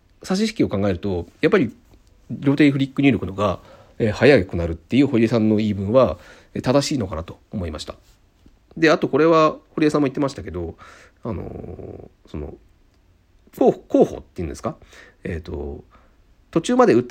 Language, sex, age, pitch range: Japanese, male, 40-59, 90-125 Hz